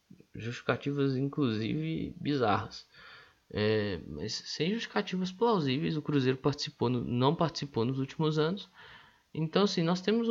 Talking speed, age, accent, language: 120 wpm, 20-39, Brazilian, Portuguese